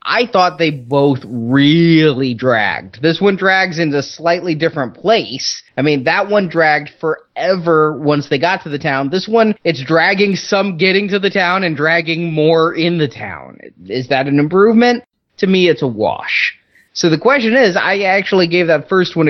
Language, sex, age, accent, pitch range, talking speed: English, male, 30-49, American, 145-195 Hz, 185 wpm